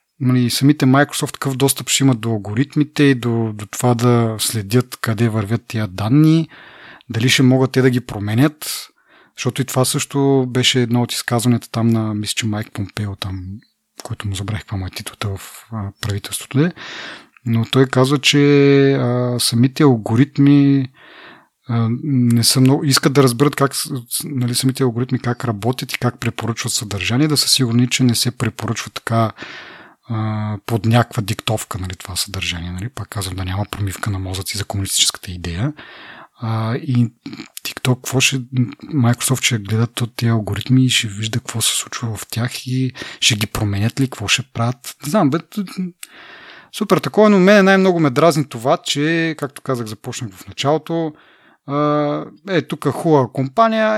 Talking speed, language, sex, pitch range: 165 wpm, Bulgarian, male, 110-140 Hz